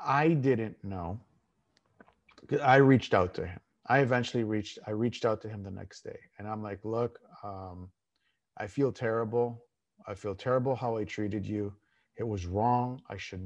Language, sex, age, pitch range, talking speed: English, male, 50-69, 100-115 Hz, 175 wpm